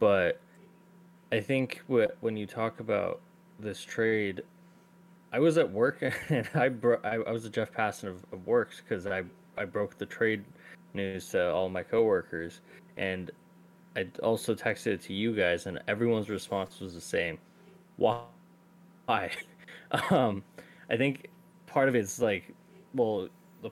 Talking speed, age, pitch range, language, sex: 155 wpm, 20-39, 100-160 Hz, English, male